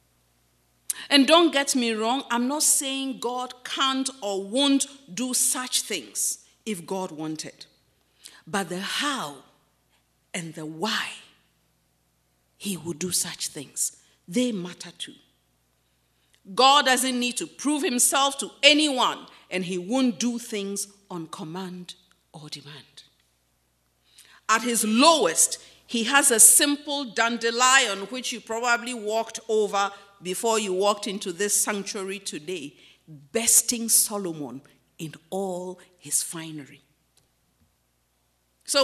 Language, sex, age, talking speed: English, female, 50-69, 115 wpm